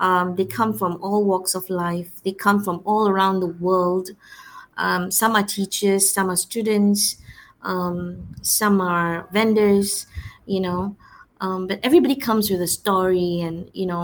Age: 20-39